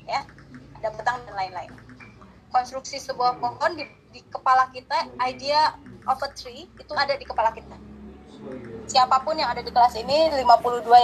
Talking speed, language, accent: 140 wpm, Indonesian, native